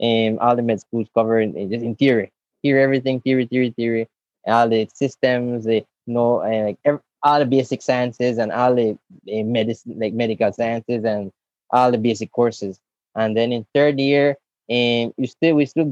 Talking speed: 190 wpm